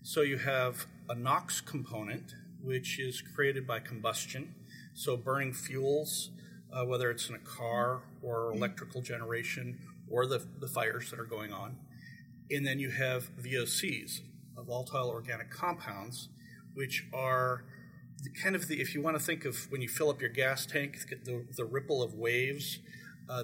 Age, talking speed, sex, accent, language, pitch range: 40-59, 160 wpm, male, American, English, 120-140 Hz